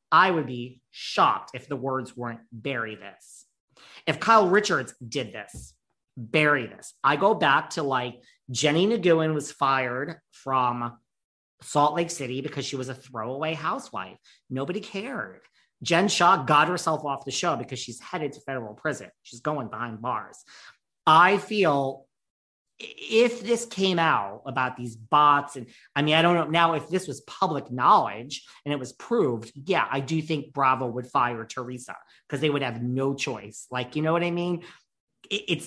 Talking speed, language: 170 wpm, English